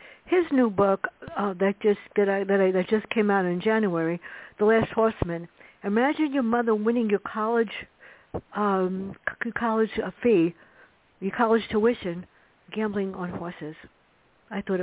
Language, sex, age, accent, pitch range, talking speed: English, female, 60-79, American, 195-245 Hz, 150 wpm